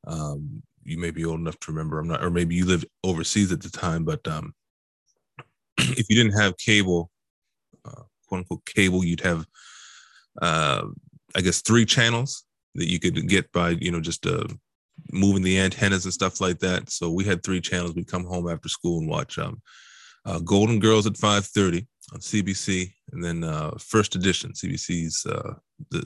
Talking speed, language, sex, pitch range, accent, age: 185 wpm, English, male, 85-100 Hz, American, 20-39